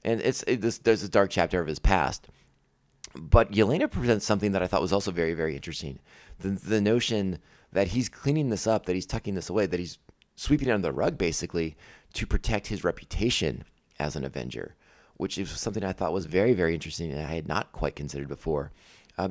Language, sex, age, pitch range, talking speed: English, male, 30-49, 85-115 Hz, 210 wpm